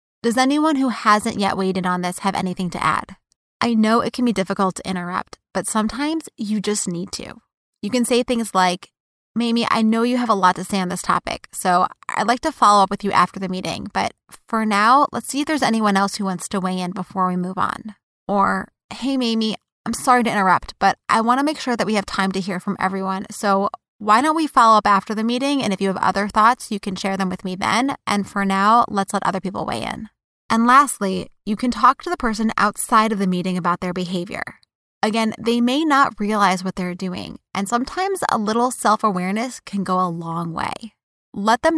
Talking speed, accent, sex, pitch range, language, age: 230 wpm, American, female, 190-235 Hz, English, 20-39